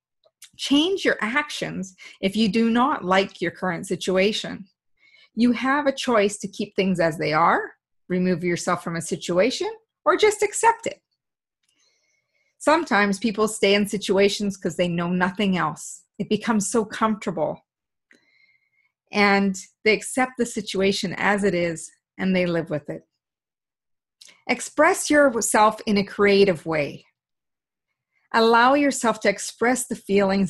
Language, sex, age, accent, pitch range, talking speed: English, female, 40-59, American, 185-240 Hz, 135 wpm